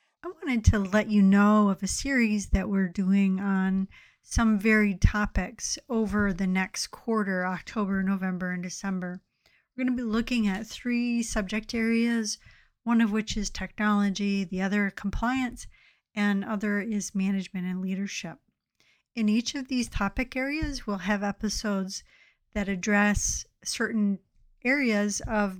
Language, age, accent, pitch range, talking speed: English, 50-69, American, 195-230 Hz, 140 wpm